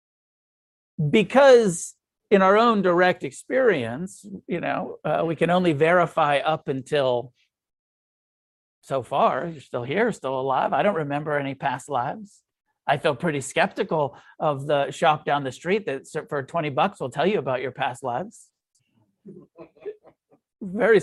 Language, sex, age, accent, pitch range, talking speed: English, male, 50-69, American, 145-190 Hz, 145 wpm